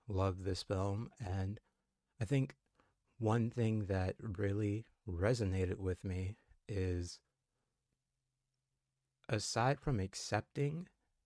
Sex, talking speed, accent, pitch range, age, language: male, 90 wpm, American, 95-115 Hz, 30-49, English